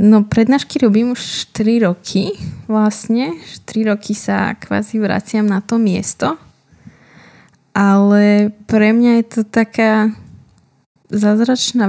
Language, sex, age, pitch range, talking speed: Slovak, female, 20-39, 190-210 Hz, 110 wpm